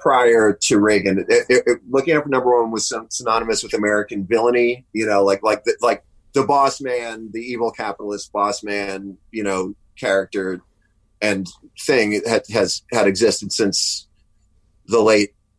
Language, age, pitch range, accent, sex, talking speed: English, 30-49, 100-125 Hz, American, male, 160 wpm